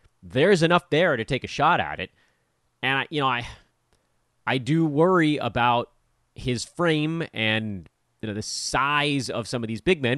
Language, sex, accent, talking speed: English, male, American, 185 wpm